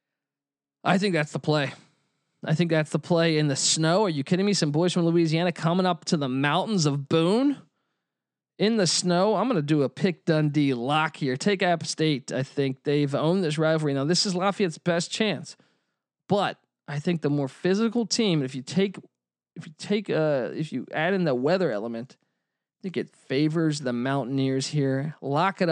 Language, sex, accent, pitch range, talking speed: English, male, American, 140-180 Hz, 200 wpm